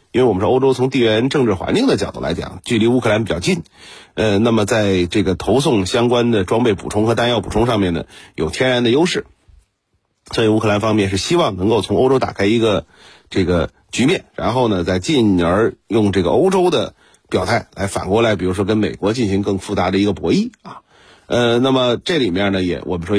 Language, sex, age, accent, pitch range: Chinese, male, 30-49, native, 95-120 Hz